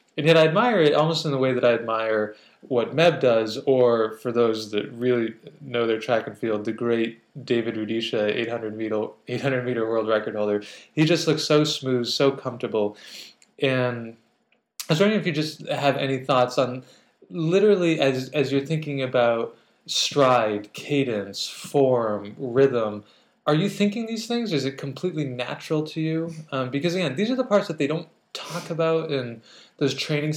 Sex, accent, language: male, American, English